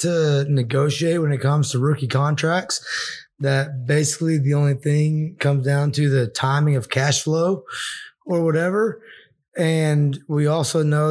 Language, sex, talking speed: English, male, 145 wpm